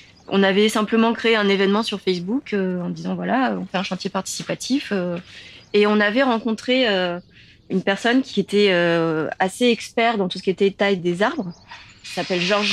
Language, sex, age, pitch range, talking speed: French, female, 20-39, 190-230 Hz, 195 wpm